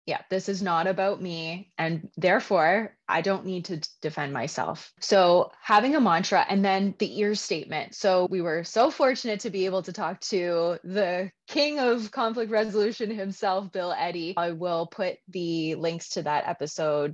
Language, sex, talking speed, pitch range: English, female, 175 wpm, 160-205 Hz